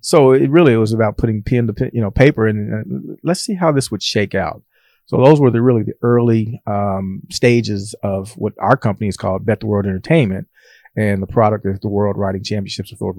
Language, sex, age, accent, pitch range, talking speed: English, male, 40-59, American, 100-115 Hz, 230 wpm